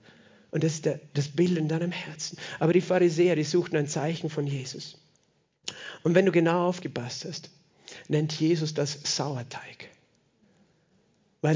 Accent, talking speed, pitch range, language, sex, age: German, 145 wpm, 140-170 Hz, German, male, 40-59